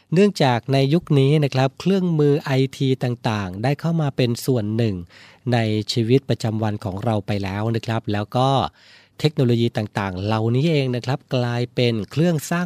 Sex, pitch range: male, 105-135 Hz